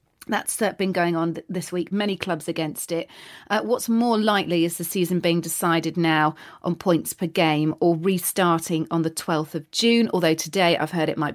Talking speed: 195 wpm